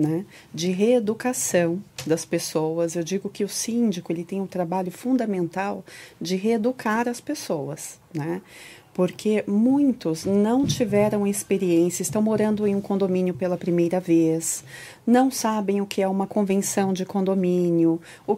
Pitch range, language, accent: 165-220 Hz, Portuguese, Brazilian